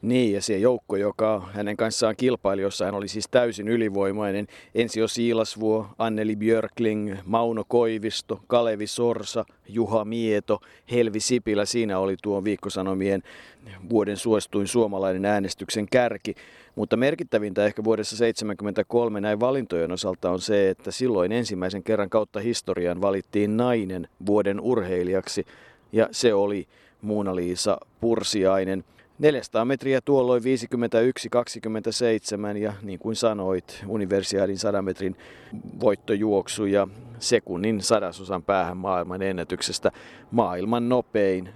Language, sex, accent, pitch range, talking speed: Finnish, male, native, 100-120 Hz, 115 wpm